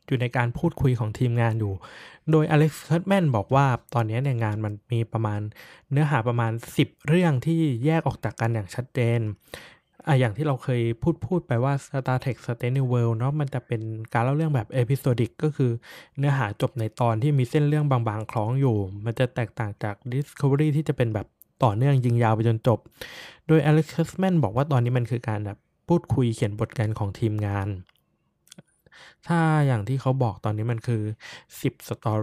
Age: 20-39